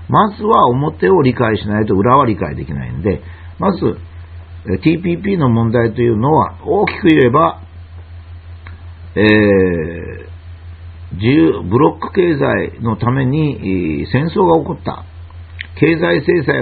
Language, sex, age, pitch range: Japanese, male, 50-69, 85-130 Hz